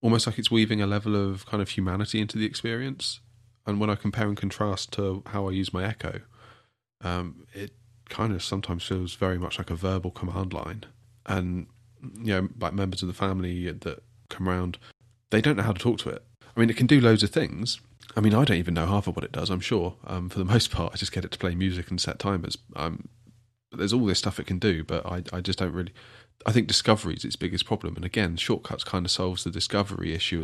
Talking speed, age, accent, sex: 245 wpm, 30-49, British, male